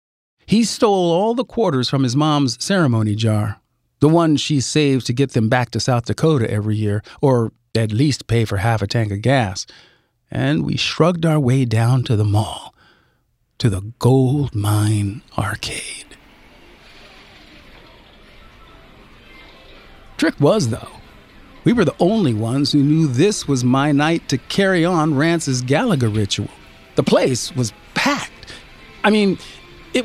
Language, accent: English, American